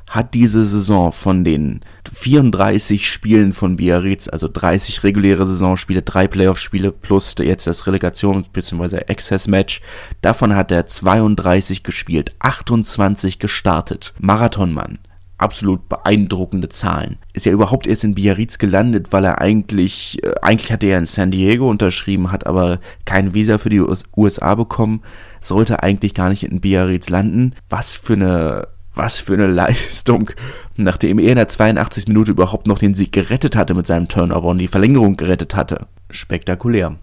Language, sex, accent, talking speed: German, male, German, 150 wpm